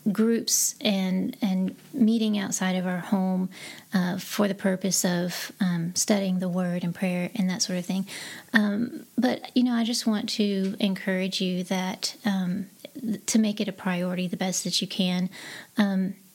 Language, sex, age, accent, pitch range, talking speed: English, female, 30-49, American, 185-210 Hz, 175 wpm